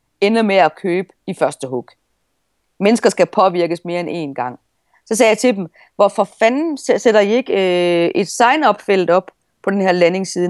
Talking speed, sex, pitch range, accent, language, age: 185 wpm, female, 170-235 Hz, native, Danish, 30-49